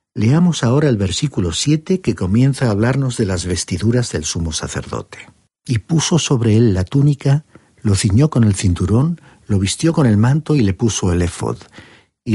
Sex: male